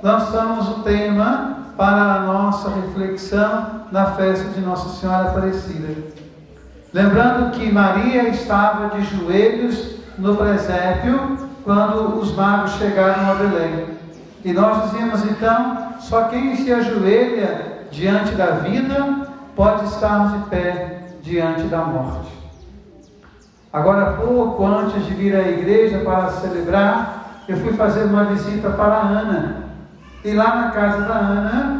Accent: Brazilian